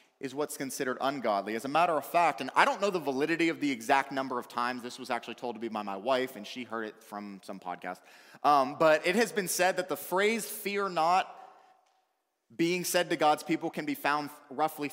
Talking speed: 230 wpm